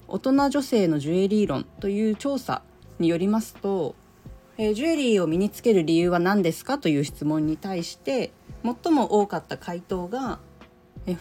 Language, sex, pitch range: Japanese, female, 165-220 Hz